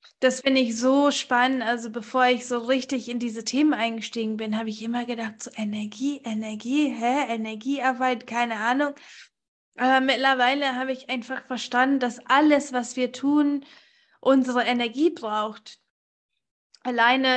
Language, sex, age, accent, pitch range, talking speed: German, female, 20-39, German, 230-260 Hz, 140 wpm